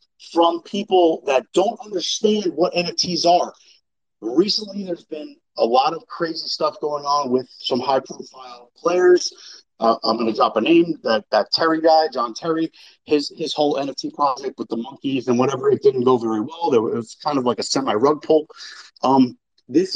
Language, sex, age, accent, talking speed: English, male, 30-49, American, 185 wpm